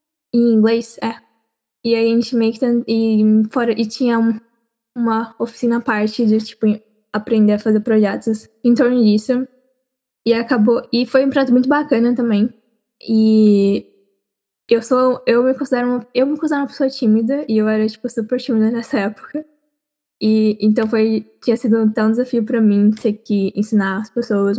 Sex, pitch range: female, 215-245 Hz